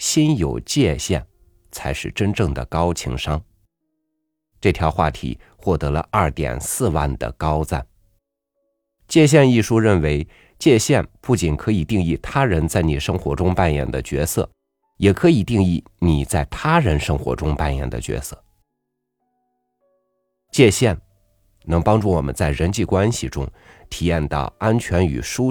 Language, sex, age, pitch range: Chinese, male, 50-69, 75-105 Hz